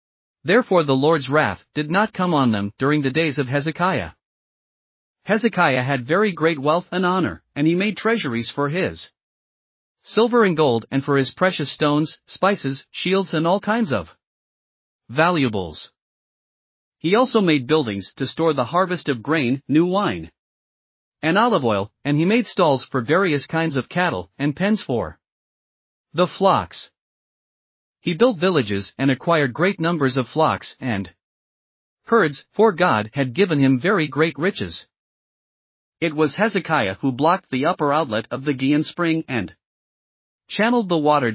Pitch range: 130-180 Hz